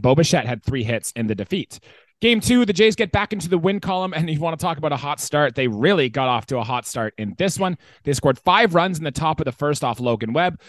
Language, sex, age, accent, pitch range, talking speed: English, male, 20-39, American, 130-190 Hz, 290 wpm